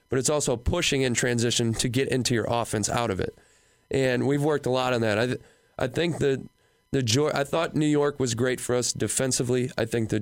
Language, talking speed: English, 240 wpm